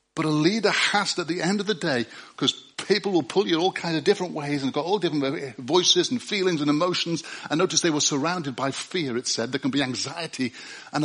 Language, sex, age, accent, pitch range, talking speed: English, male, 60-79, British, 115-155 Hz, 240 wpm